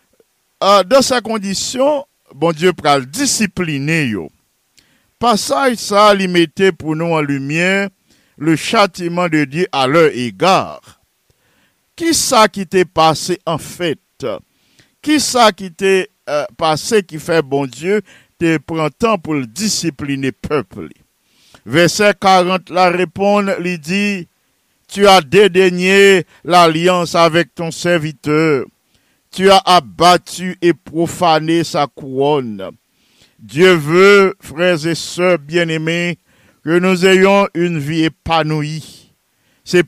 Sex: male